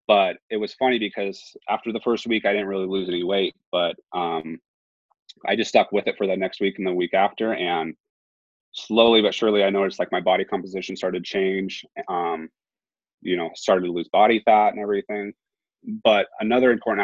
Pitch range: 95-115 Hz